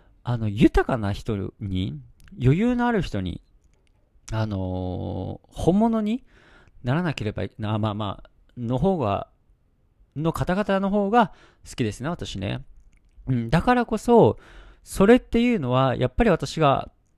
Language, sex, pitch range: Japanese, male, 105-165 Hz